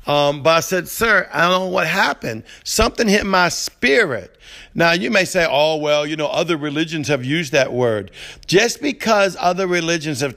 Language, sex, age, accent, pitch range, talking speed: English, male, 50-69, American, 145-180 Hz, 190 wpm